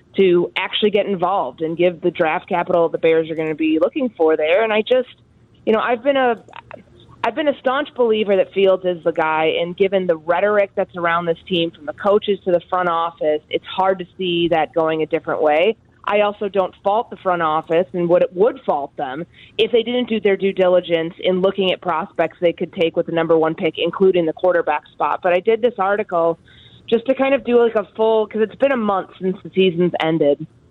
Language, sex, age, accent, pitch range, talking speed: English, female, 30-49, American, 165-205 Hz, 230 wpm